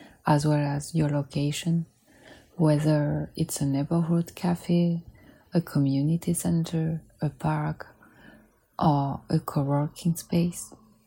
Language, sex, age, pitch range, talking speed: English, female, 30-49, 140-160 Hz, 105 wpm